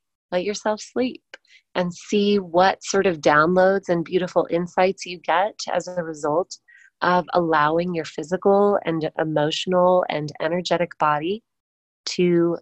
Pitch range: 170-200 Hz